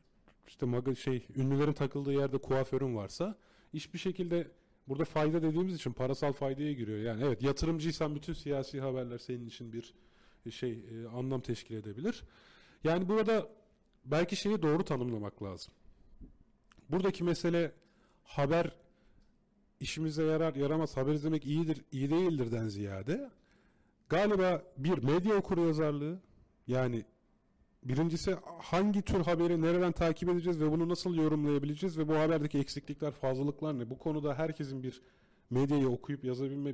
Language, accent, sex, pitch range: Turkish, native, male, 130-175 Hz